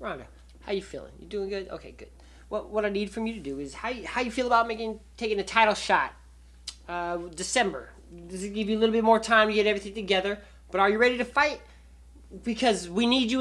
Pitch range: 175-230 Hz